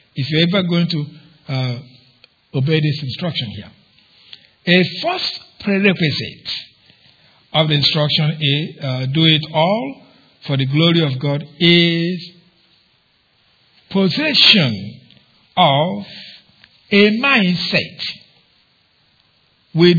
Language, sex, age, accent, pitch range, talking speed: English, male, 60-79, Nigerian, 140-175 Hz, 100 wpm